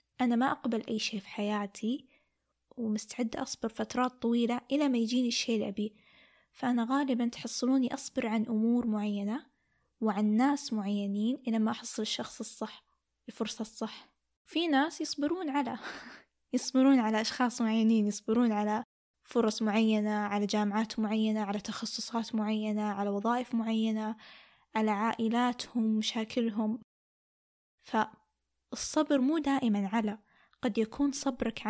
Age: 10-29